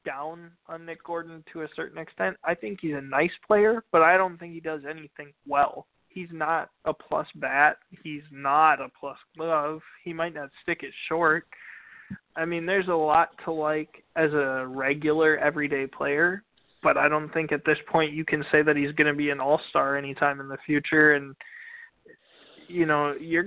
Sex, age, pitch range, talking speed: male, 20-39, 145-170 Hz, 195 wpm